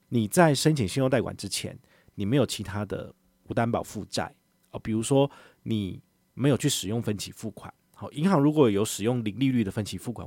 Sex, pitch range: male, 95-130 Hz